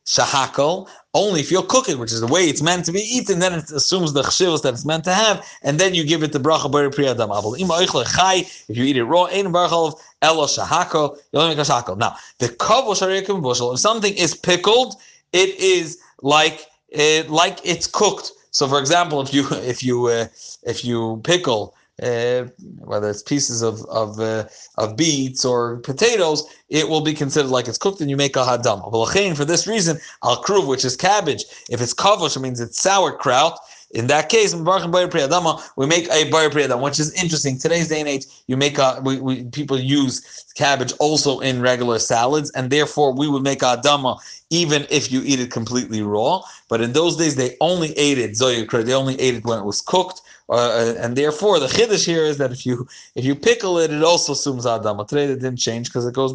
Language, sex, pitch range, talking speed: English, male, 125-165 Hz, 205 wpm